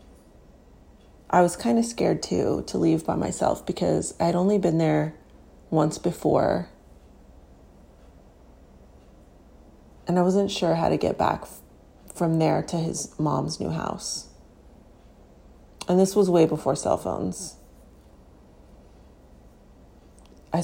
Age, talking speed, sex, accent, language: 30-49, 120 wpm, female, American, English